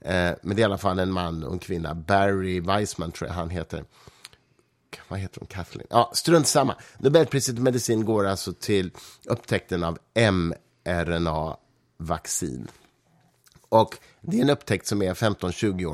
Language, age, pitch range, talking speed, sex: Swedish, 30-49, 95-120 Hz, 155 wpm, male